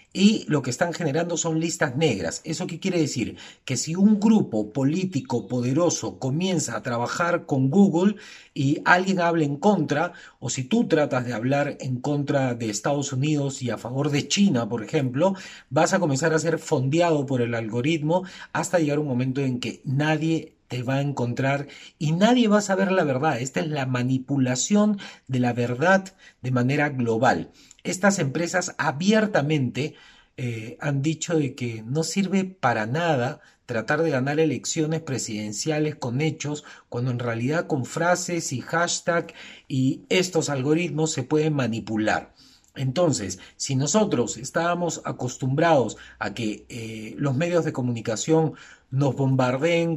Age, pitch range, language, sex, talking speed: 40-59, 125-165 Hz, Spanish, male, 155 wpm